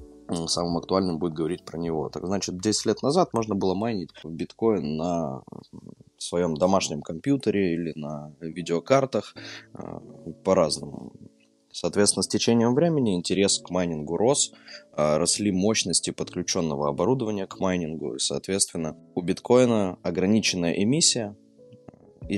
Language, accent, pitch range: Russian, native, 85-105 Hz